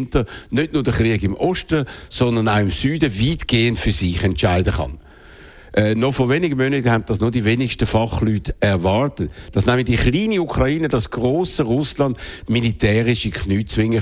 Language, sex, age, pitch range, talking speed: German, male, 60-79, 105-135 Hz, 165 wpm